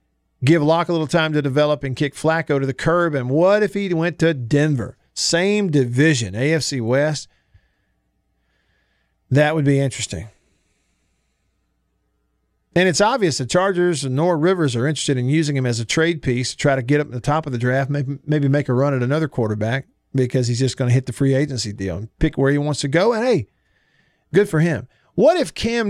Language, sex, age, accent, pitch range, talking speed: English, male, 50-69, American, 125-170 Hz, 205 wpm